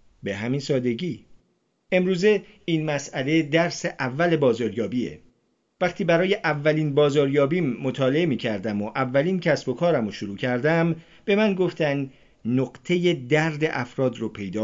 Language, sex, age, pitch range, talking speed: Persian, male, 50-69, 130-175 Hz, 125 wpm